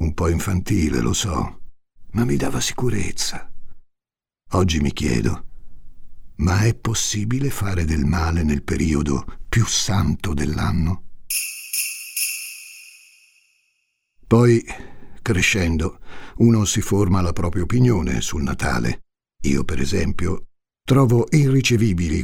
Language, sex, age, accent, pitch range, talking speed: Italian, male, 60-79, native, 85-110 Hz, 105 wpm